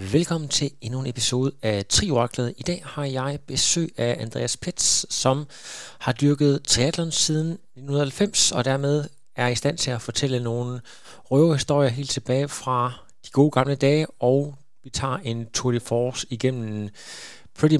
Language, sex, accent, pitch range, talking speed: Danish, male, native, 120-160 Hz, 160 wpm